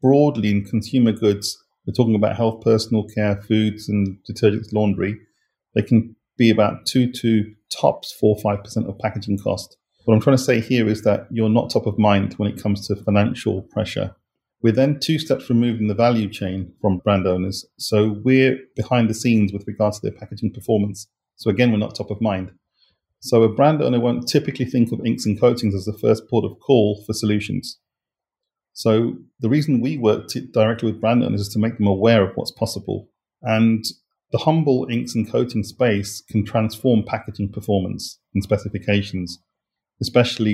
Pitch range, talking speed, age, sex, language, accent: 100-115 Hz, 185 wpm, 40-59, male, English, British